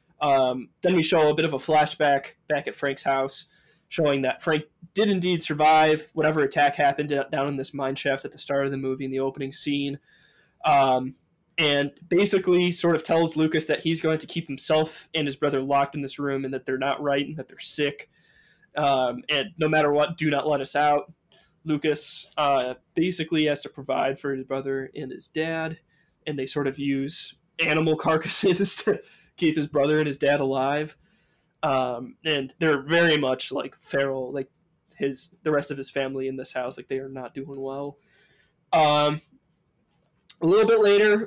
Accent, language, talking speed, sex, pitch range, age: American, English, 190 wpm, male, 140-165 Hz, 20-39